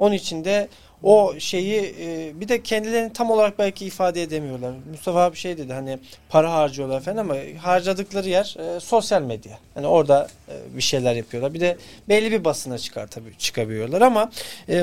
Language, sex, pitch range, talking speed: Turkish, male, 140-200 Hz, 180 wpm